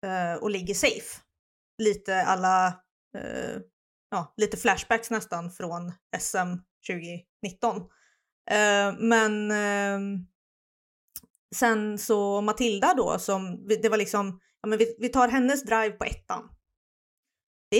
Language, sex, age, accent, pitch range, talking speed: Swedish, female, 30-49, native, 200-240 Hz, 115 wpm